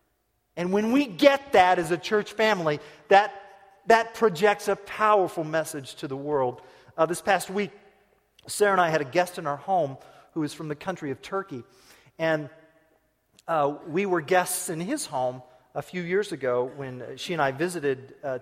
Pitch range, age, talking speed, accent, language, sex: 145-190 Hz, 40-59, 180 wpm, American, English, male